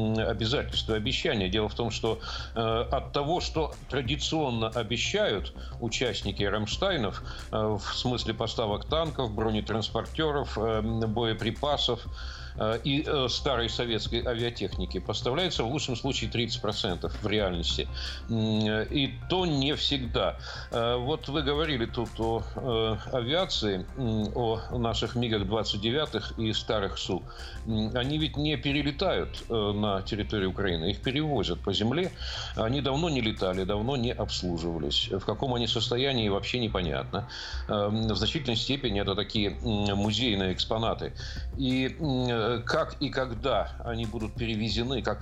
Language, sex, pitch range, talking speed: Russian, male, 95-120 Hz, 115 wpm